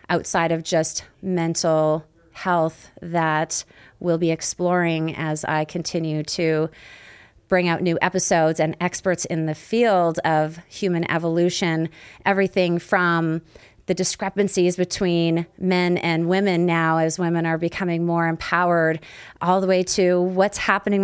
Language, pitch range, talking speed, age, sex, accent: English, 165-190 Hz, 130 wpm, 30-49, female, American